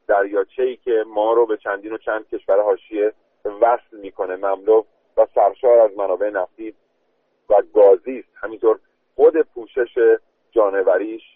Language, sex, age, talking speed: Persian, male, 40-59, 130 wpm